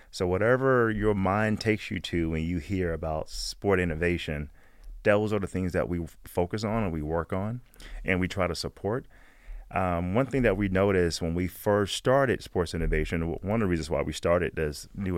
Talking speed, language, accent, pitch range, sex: 200 wpm, English, American, 85-100 Hz, male